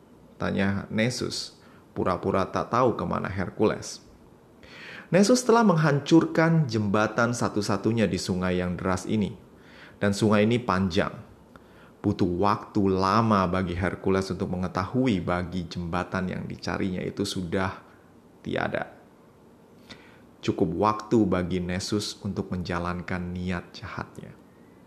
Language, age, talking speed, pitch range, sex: Indonesian, 30-49, 105 wpm, 95-130 Hz, male